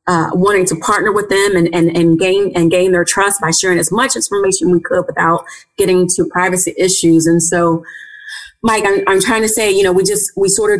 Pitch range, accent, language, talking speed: 170-190 Hz, American, English, 230 wpm